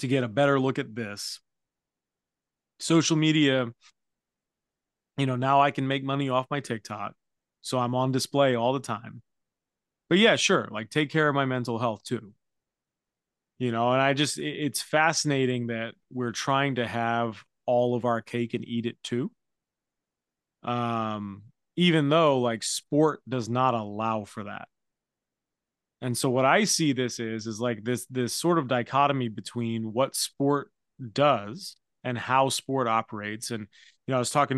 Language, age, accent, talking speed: English, 30-49, American, 165 wpm